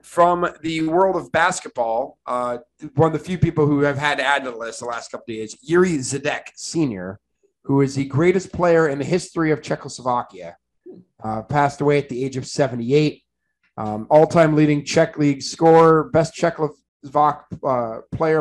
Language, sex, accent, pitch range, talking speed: English, male, American, 125-155 Hz, 180 wpm